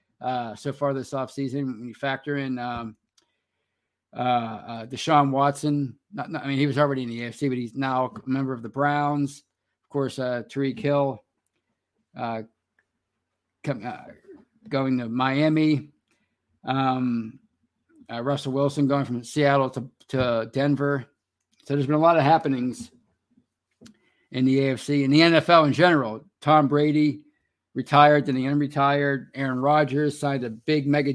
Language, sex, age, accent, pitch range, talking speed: English, male, 50-69, American, 130-150 Hz, 155 wpm